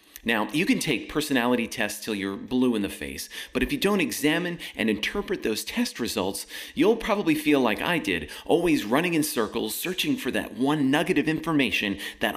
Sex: male